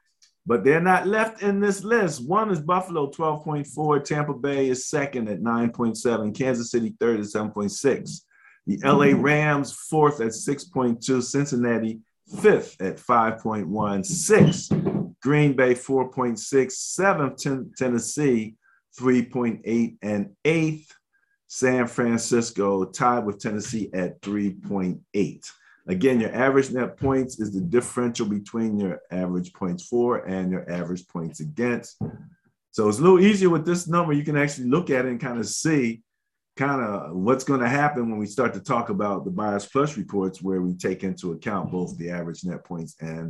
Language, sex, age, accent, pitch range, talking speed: English, male, 40-59, American, 105-145 Hz, 155 wpm